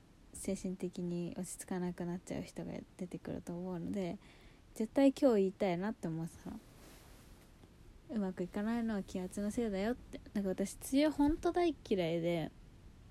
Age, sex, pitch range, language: 20-39, female, 175-260 Hz, Japanese